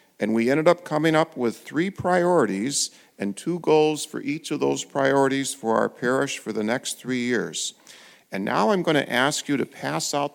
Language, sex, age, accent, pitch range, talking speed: English, male, 50-69, American, 120-155 Hz, 195 wpm